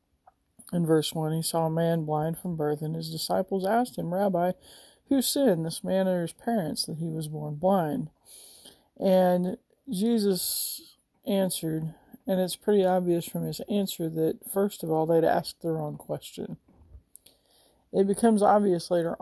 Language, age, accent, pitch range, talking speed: English, 40-59, American, 160-195 Hz, 160 wpm